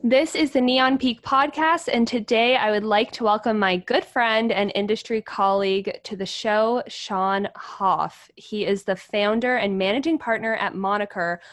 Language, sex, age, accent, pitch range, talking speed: English, female, 20-39, American, 195-245 Hz, 170 wpm